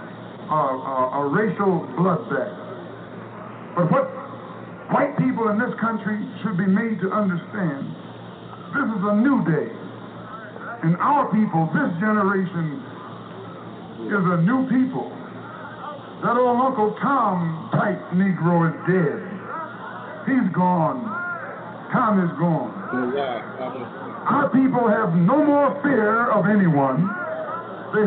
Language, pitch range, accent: English, 190-245 Hz, American